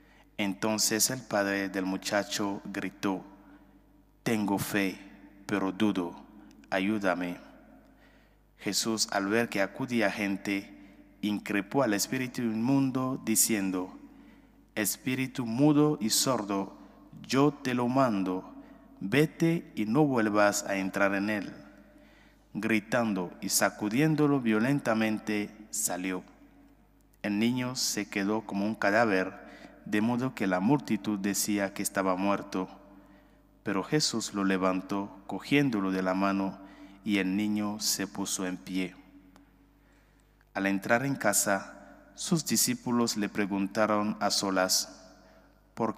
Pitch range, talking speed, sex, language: 95-115 Hz, 110 wpm, male, English